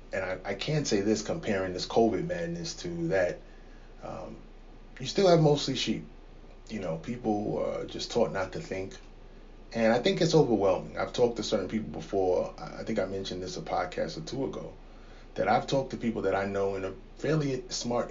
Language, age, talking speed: English, 30-49, 200 wpm